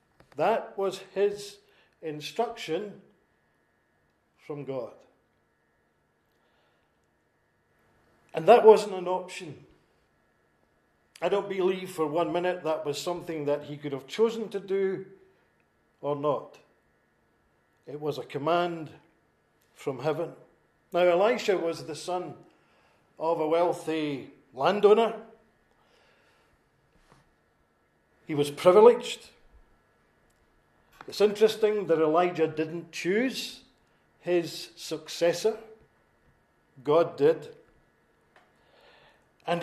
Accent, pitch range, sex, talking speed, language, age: British, 155-210 Hz, male, 90 wpm, English, 50-69